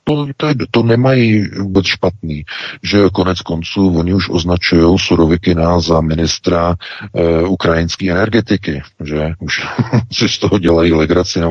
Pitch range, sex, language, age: 80-95 Hz, male, Czech, 50-69